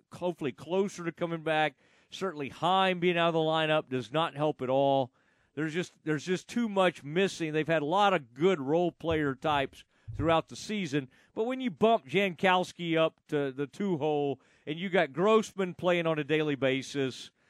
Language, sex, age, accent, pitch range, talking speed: English, male, 40-59, American, 145-180 Hz, 180 wpm